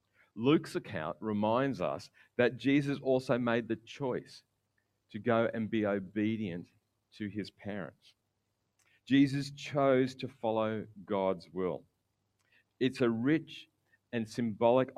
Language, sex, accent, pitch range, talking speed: English, male, Australian, 100-125 Hz, 115 wpm